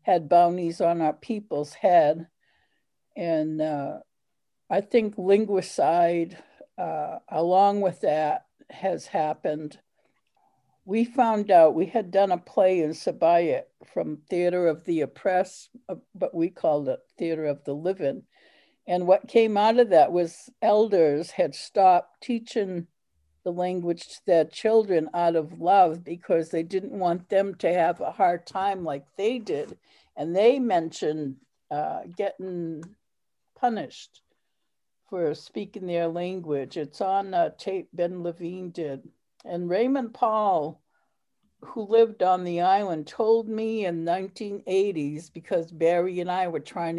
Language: English